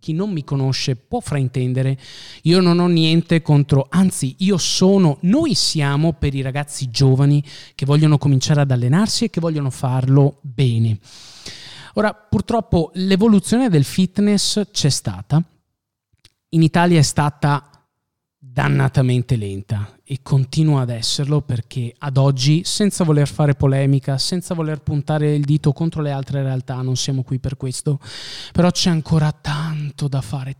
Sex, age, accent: male, 30-49, native